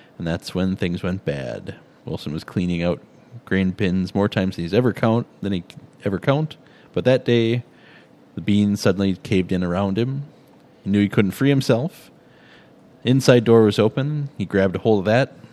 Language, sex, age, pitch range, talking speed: English, male, 30-49, 95-120 Hz, 190 wpm